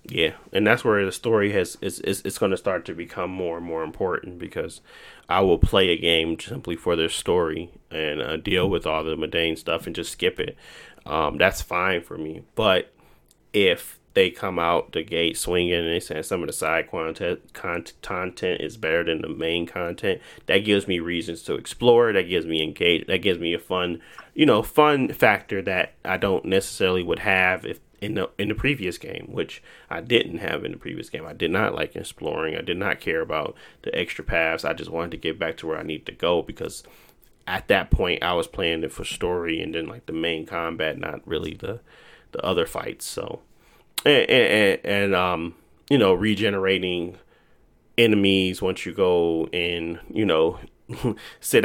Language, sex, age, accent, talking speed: English, male, 30-49, American, 200 wpm